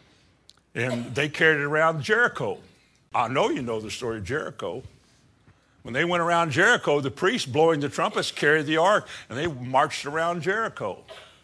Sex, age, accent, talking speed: male, 60-79, American, 170 wpm